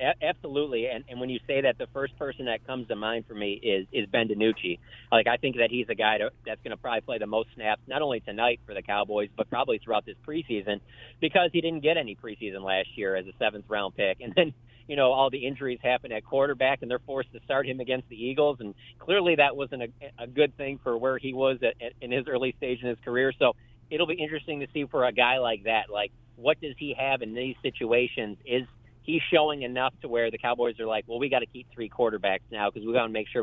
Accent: American